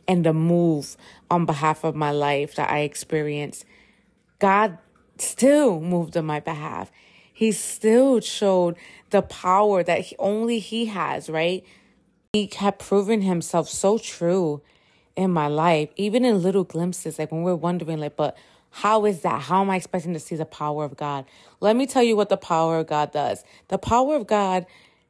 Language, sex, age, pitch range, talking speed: English, female, 30-49, 160-195 Hz, 175 wpm